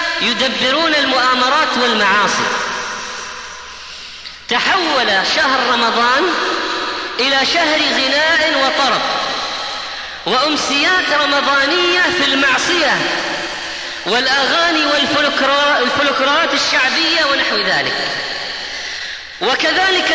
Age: 30-49